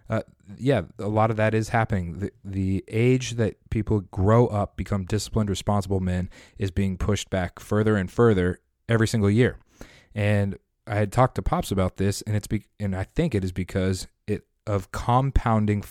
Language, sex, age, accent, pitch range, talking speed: English, male, 30-49, American, 95-115 Hz, 185 wpm